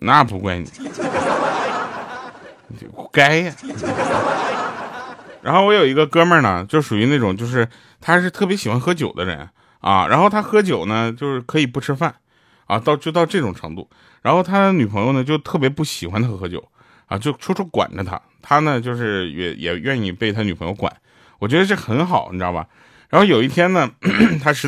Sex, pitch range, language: male, 110-170 Hz, Chinese